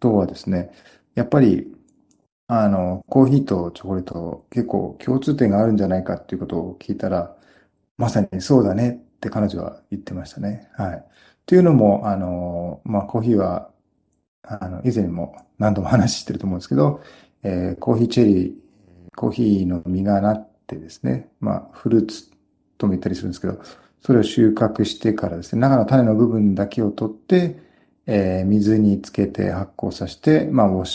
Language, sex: Japanese, male